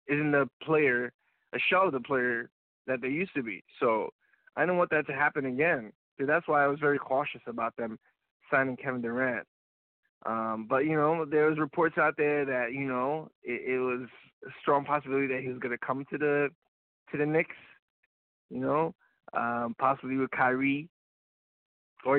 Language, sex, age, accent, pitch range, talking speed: English, male, 20-39, American, 125-150 Hz, 185 wpm